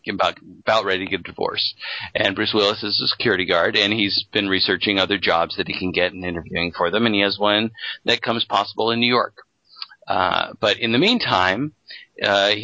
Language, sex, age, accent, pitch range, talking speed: English, male, 40-59, American, 90-110 Hz, 200 wpm